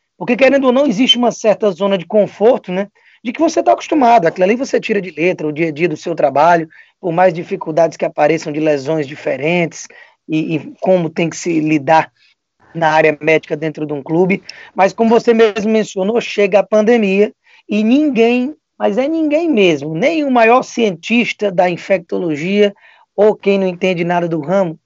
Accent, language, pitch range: Brazilian, Portuguese, 170-230 Hz